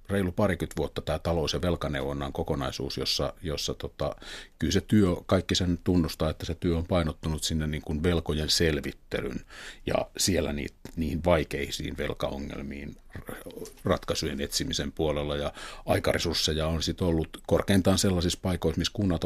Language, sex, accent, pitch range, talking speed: Finnish, male, native, 75-90 Hz, 140 wpm